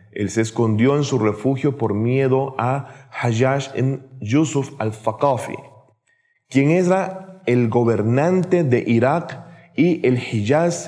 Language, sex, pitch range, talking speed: Spanish, male, 105-150 Hz, 120 wpm